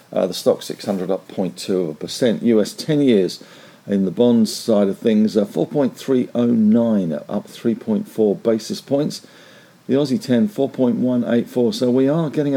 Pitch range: 110-140 Hz